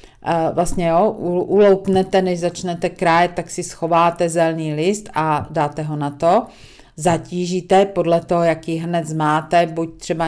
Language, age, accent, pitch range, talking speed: Czech, 40-59, native, 155-180 Hz, 135 wpm